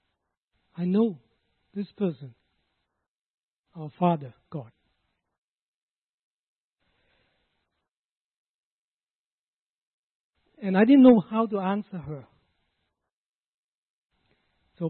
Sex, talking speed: male, 65 wpm